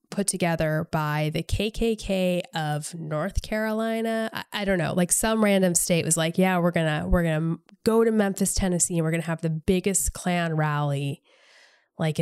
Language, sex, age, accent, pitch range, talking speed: English, female, 10-29, American, 160-200 Hz, 190 wpm